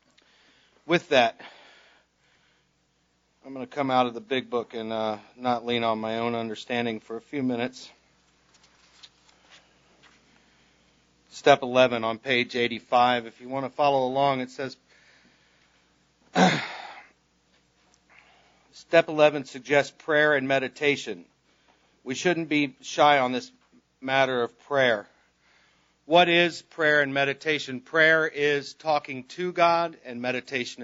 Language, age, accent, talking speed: English, 40-59, American, 125 wpm